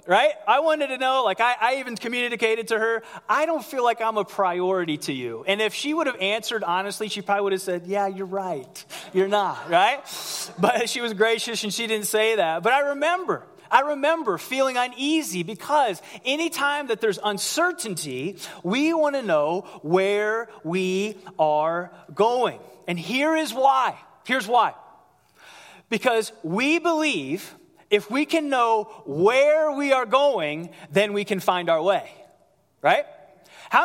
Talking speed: 165 wpm